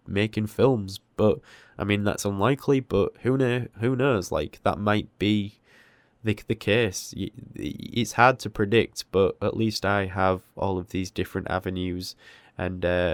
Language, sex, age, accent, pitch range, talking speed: English, male, 20-39, British, 95-115 Hz, 160 wpm